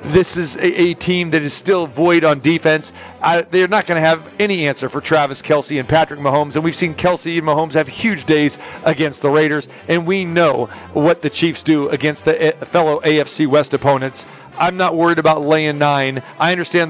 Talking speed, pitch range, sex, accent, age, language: 200 wpm, 150-180 Hz, male, American, 40-59, English